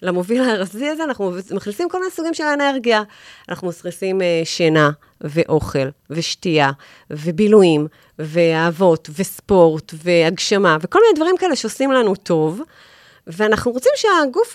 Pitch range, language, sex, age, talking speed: 170-255 Hz, Hebrew, female, 30-49, 125 wpm